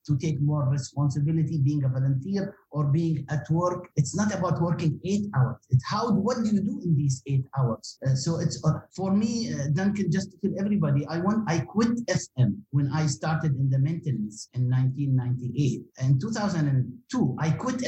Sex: male